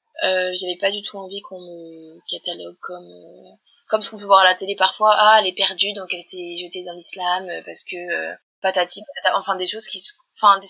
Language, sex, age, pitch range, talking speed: French, female, 20-39, 185-215 Hz, 230 wpm